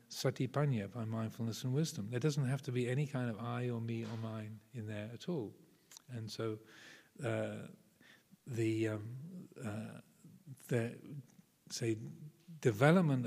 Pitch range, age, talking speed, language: 115-145 Hz, 50-69, 140 wpm, English